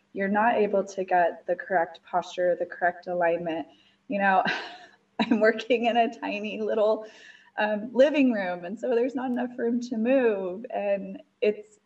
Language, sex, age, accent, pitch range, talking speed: English, female, 20-39, American, 175-215 Hz, 160 wpm